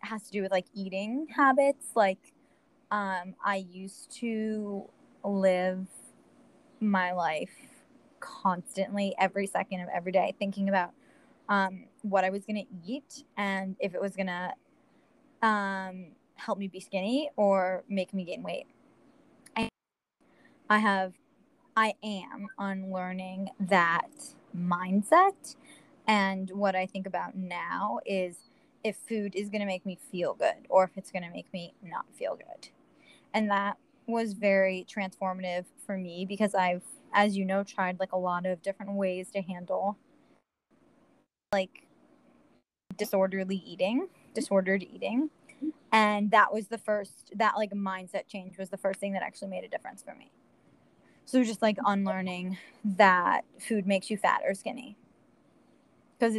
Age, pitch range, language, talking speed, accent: 20-39, 190-225 Hz, English, 145 wpm, American